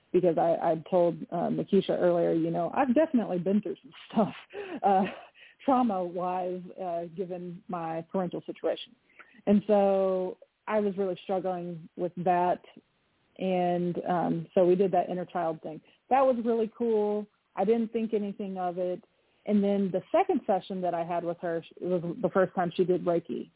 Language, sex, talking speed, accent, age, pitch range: English, female, 170 wpm, American, 30-49, 175-210 Hz